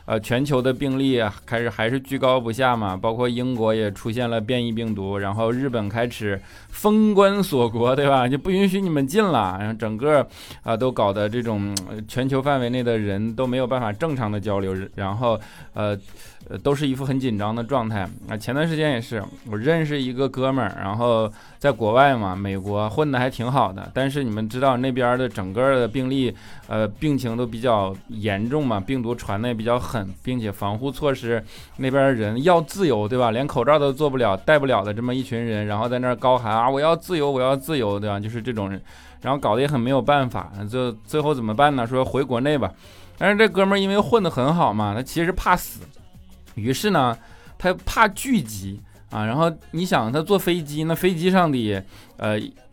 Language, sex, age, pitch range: Chinese, male, 20-39, 105-140 Hz